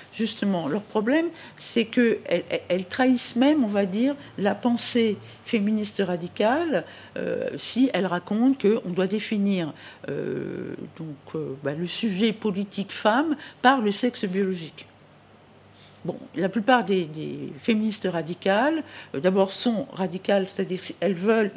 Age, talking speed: 50-69, 135 wpm